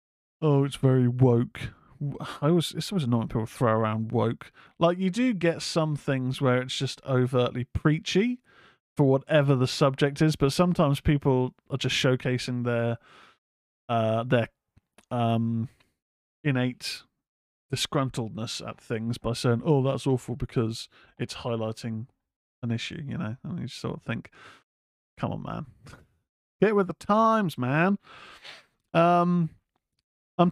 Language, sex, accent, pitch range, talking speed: English, male, British, 120-155 Hz, 140 wpm